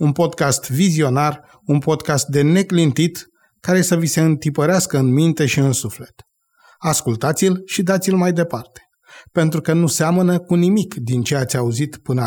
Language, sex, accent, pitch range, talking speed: Romanian, male, native, 135-170 Hz, 160 wpm